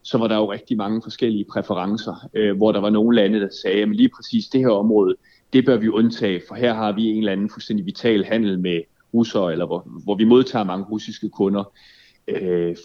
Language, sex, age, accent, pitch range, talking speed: Danish, male, 30-49, native, 105-125 Hz, 220 wpm